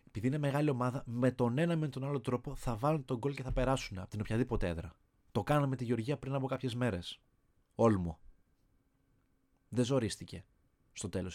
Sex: male